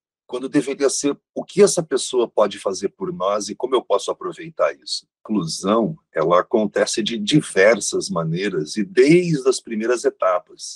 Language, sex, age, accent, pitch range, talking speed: Portuguese, male, 50-69, Brazilian, 100-165 Hz, 155 wpm